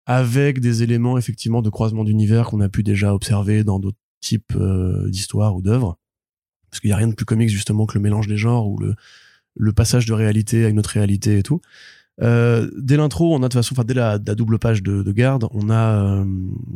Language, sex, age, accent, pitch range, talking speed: French, male, 20-39, French, 105-120 Hz, 235 wpm